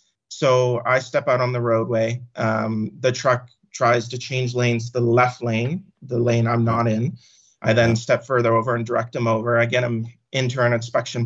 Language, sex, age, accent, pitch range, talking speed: English, male, 30-49, American, 115-125 Hz, 205 wpm